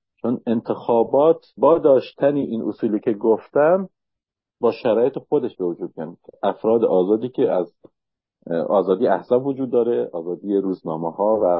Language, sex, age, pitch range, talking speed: English, male, 50-69, 105-135 Hz, 130 wpm